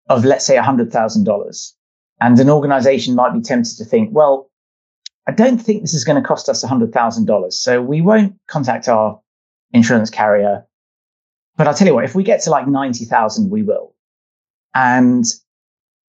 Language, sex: English, male